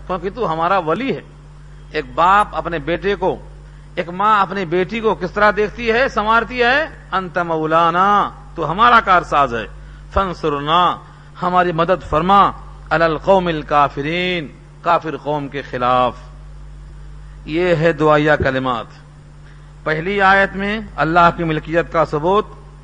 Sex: male